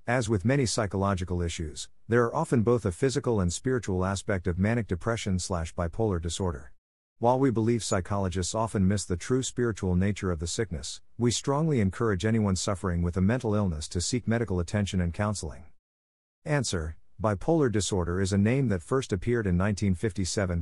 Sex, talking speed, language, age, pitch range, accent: male, 170 wpm, English, 50-69, 90-115 Hz, American